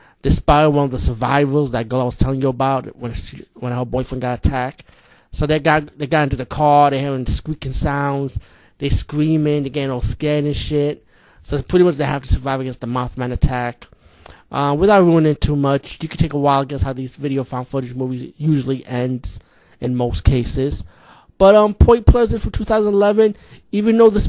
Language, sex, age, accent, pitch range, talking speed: English, male, 30-49, American, 125-155 Hz, 210 wpm